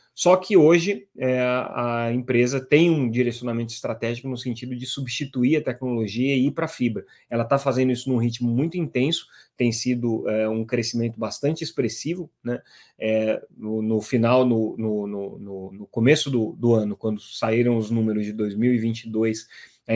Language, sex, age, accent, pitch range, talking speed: Portuguese, male, 20-39, Brazilian, 115-135 Hz, 165 wpm